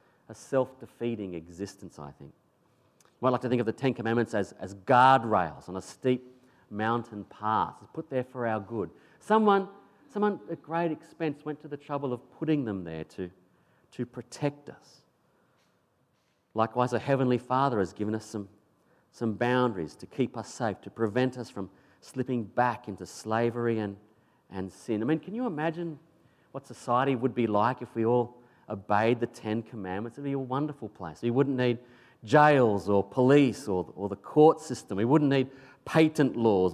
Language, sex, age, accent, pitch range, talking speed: English, male, 40-59, Australian, 105-135 Hz, 175 wpm